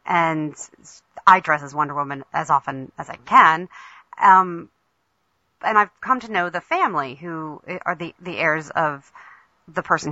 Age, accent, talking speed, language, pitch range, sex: 40-59, American, 160 wpm, English, 155-185 Hz, female